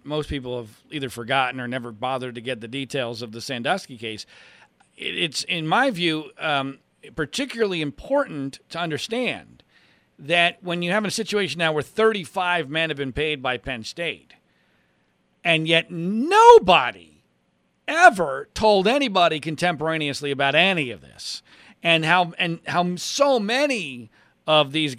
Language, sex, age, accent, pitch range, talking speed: English, male, 40-59, American, 140-210 Hz, 145 wpm